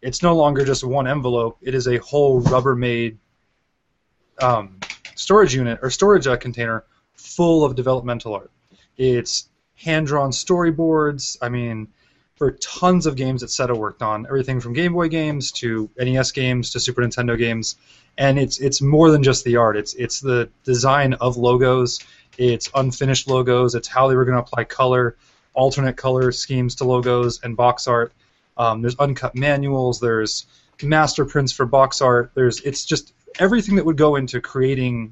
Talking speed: 165 wpm